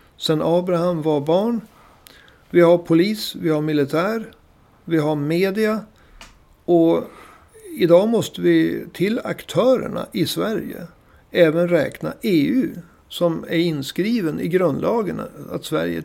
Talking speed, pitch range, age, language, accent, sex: 115 wpm, 155-210 Hz, 60-79, Swedish, native, male